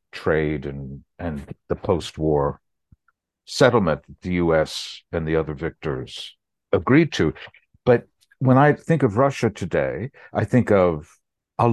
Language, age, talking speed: English, 60-79, 130 wpm